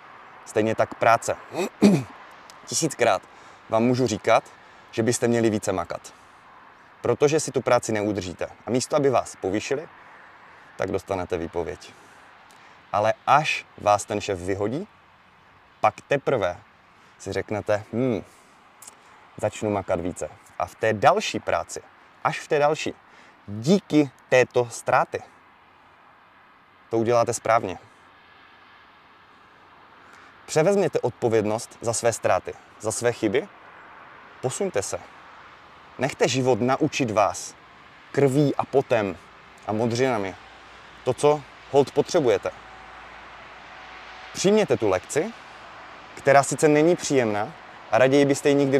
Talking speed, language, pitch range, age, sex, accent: 110 wpm, Czech, 110-140 Hz, 30-49, male, native